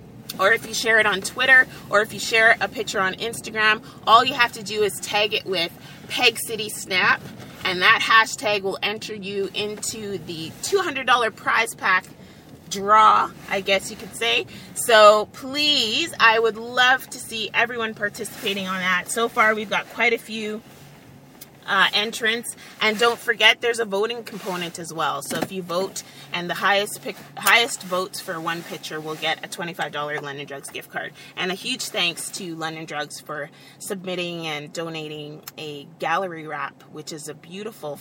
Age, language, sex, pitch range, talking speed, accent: 30-49, English, female, 170-225 Hz, 175 wpm, American